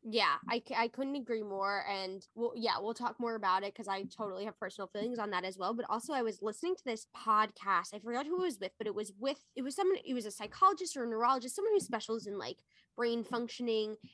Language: English